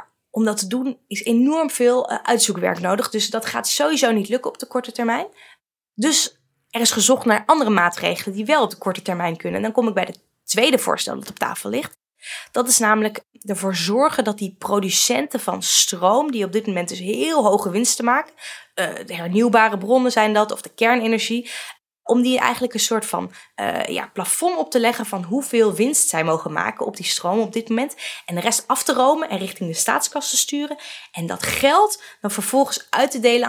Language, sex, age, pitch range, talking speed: Dutch, female, 20-39, 190-250 Hz, 210 wpm